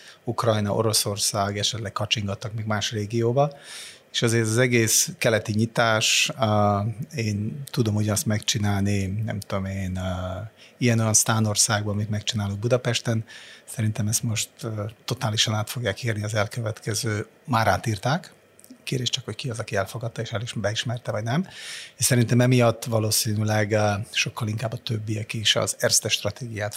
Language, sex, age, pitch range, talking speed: Hungarian, male, 30-49, 100-115 Hz, 140 wpm